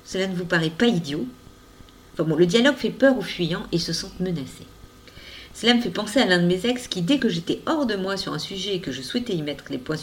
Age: 40-59